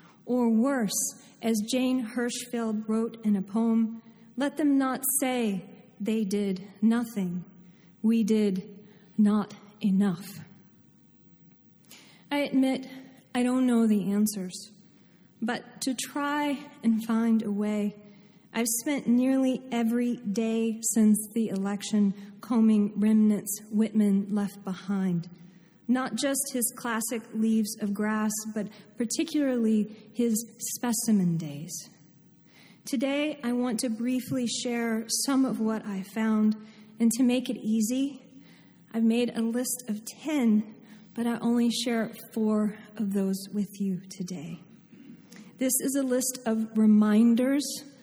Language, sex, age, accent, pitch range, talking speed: English, female, 40-59, American, 205-245 Hz, 120 wpm